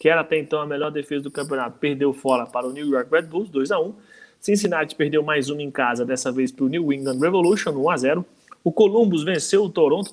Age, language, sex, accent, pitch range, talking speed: 20-39, Portuguese, male, Brazilian, 150-205 Hz, 220 wpm